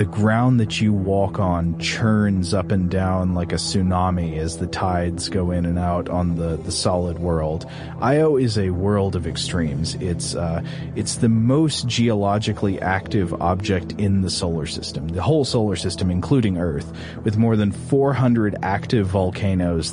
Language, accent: English, American